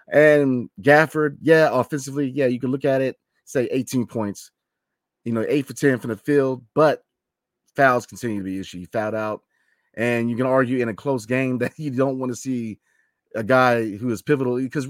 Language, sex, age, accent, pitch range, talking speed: English, male, 30-49, American, 115-145 Hz, 200 wpm